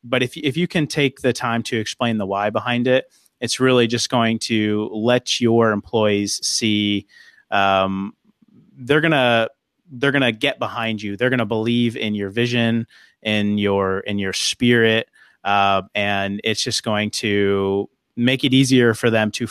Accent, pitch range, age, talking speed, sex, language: American, 100-125 Hz, 30-49, 165 wpm, male, English